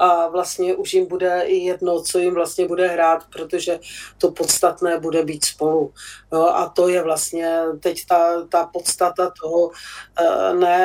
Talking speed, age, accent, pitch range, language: 155 wpm, 40-59, native, 165-180 Hz, Czech